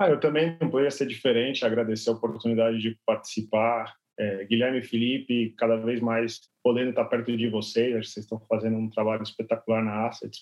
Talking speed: 185 wpm